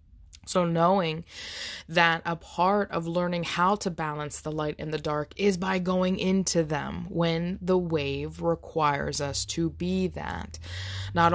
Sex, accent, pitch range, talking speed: female, American, 135-170 Hz, 155 wpm